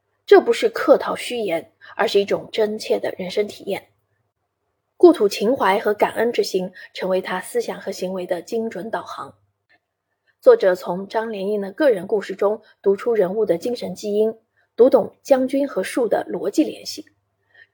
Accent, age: native, 30-49